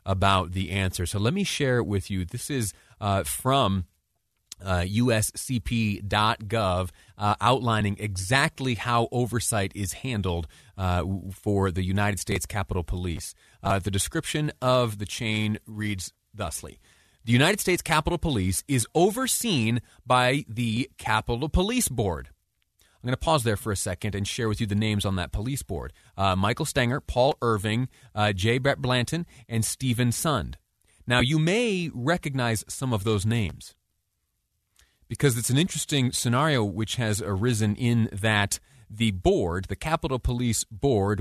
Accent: American